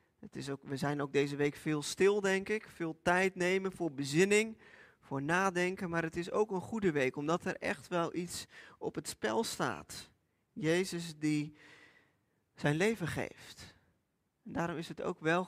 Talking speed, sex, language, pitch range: 180 wpm, male, Dutch, 165-205 Hz